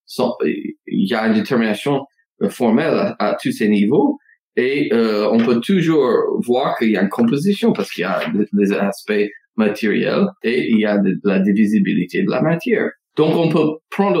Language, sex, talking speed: English, male, 190 wpm